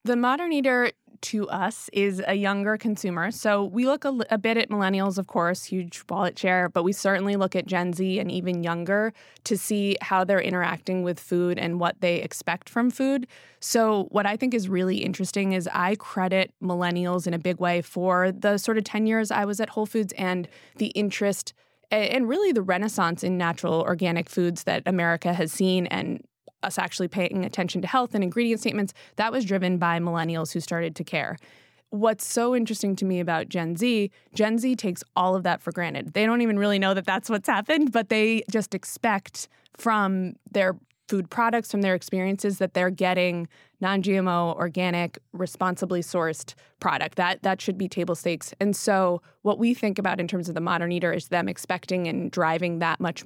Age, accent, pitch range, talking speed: 20-39, American, 175-210 Hz, 195 wpm